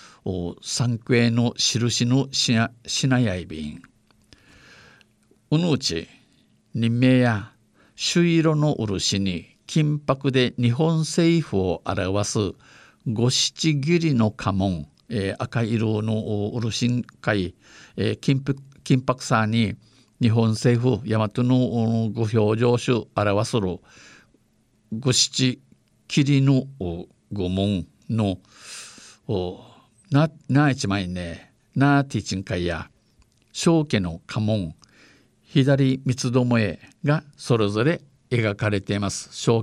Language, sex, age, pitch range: Japanese, male, 50-69, 100-135 Hz